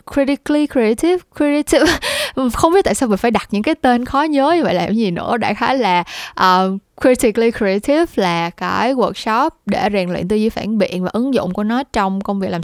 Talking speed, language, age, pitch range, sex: 220 wpm, Vietnamese, 10-29, 200-265 Hz, female